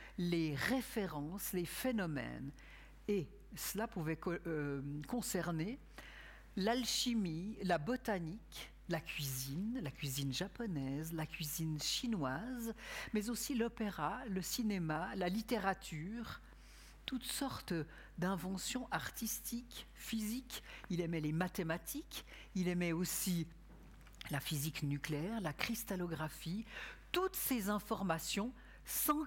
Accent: French